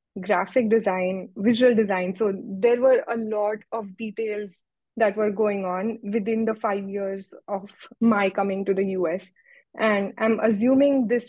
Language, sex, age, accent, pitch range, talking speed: English, female, 20-39, Indian, 200-225 Hz, 155 wpm